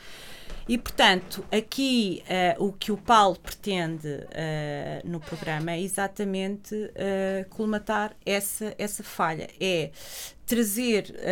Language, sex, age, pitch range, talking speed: Portuguese, female, 30-49, 175-215 Hz, 95 wpm